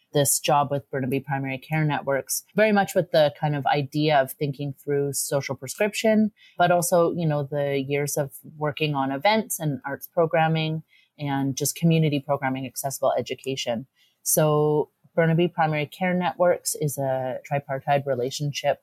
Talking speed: 150 wpm